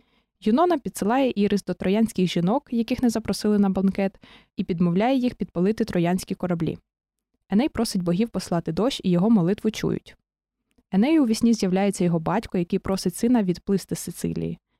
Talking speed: 150 wpm